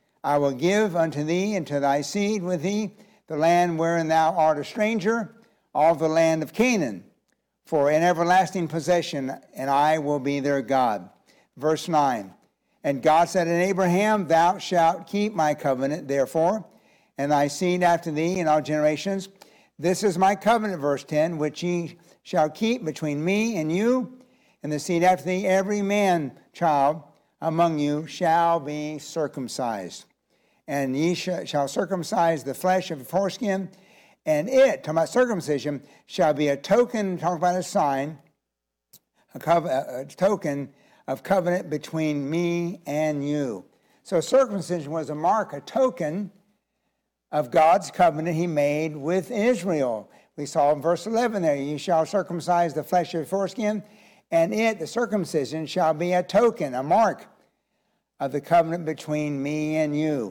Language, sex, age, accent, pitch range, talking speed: English, male, 60-79, American, 150-190 Hz, 160 wpm